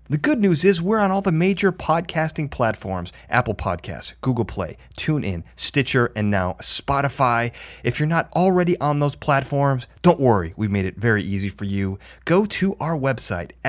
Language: English